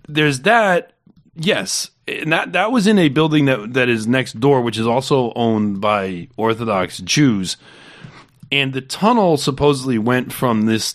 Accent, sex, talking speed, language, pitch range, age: American, male, 160 wpm, English, 120-150 Hz, 30-49